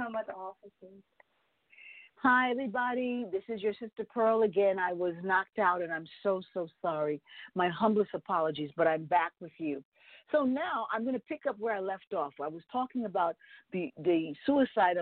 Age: 50-69